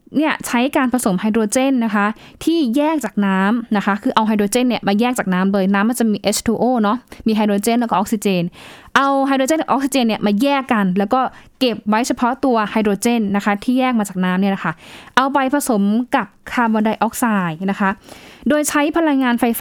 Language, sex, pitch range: Thai, female, 205-255 Hz